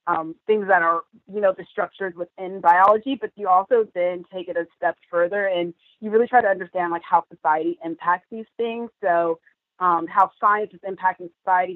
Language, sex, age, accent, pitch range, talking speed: English, female, 20-39, American, 170-200 Hz, 190 wpm